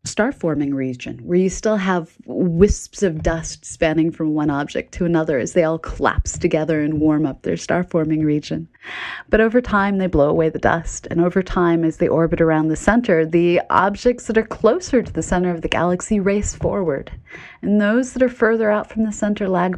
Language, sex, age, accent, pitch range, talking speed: English, female, 30-49, American, 160-200 Hz, 205 wpm